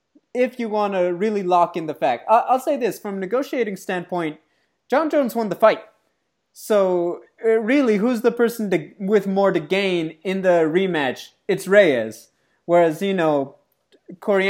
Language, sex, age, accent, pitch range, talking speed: English, male, 20-39, American, 165-205 Hz, 165 wpm